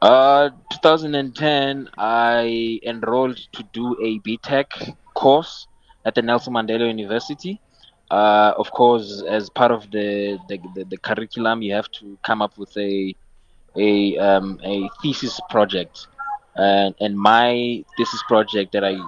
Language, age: English, 20-39